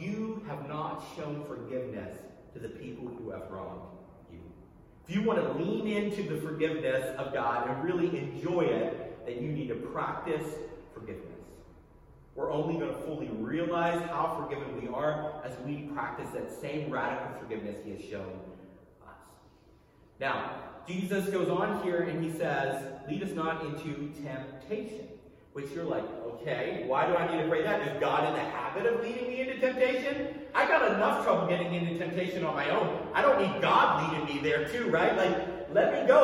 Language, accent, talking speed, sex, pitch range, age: English, American, 180 wpm, male, 150-205 Hz, 30-49